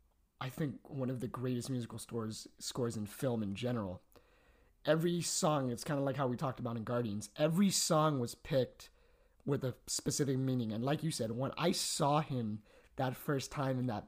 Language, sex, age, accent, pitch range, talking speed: English, male, 30-49, American, 115-155 Hz, 190 wpm